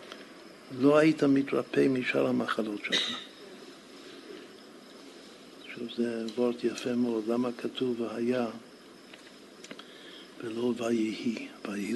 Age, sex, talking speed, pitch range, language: 60-79, male, 85 wpm, 110-130 Hz, Hebrew